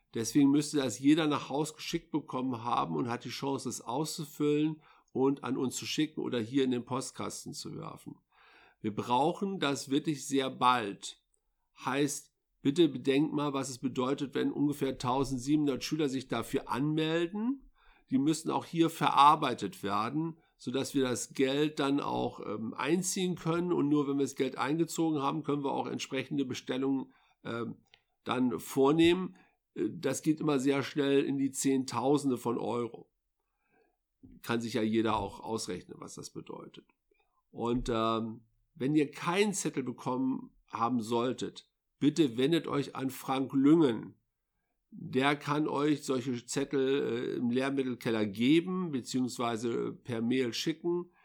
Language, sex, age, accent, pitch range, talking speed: German, male, 50-69, German, 125-155 Hz, 145 wpm